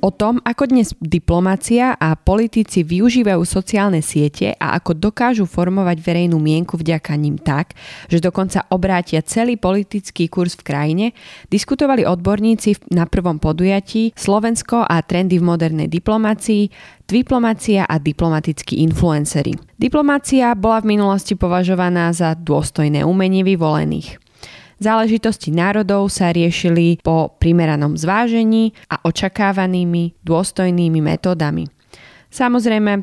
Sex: female